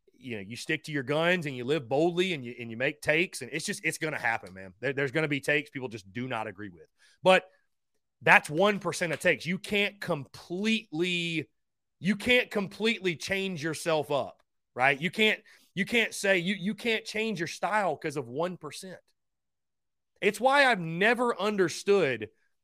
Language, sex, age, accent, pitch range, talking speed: English, male, 30-49, American, 130-210 Hz, 185 wpm